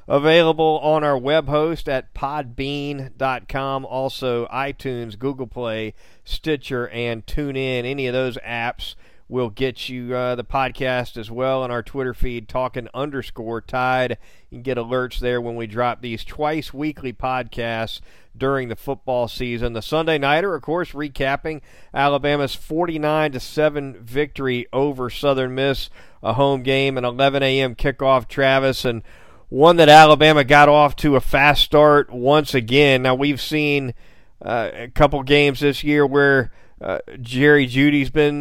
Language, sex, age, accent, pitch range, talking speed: English, male, 50-69, American, 125-145 Hz, 145 wpm